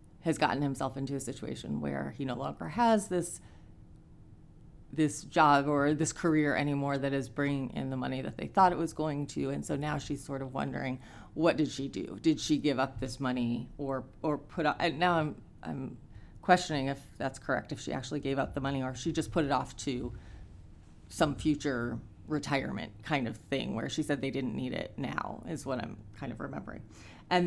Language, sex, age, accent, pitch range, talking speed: English, female, 30-49, American, 130-165 Hz, 210 wpm